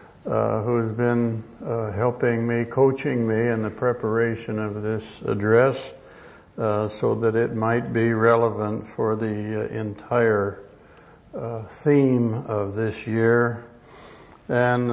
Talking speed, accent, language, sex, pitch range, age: 125 wpm, American, English, male, 105-120 Hz, 60-79